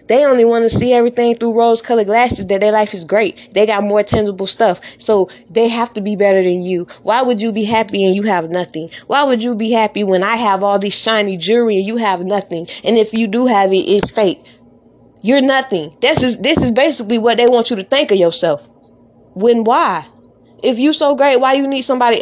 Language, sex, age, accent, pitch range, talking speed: English, female, 20-39, American, 200-250 Hz, 225 wpm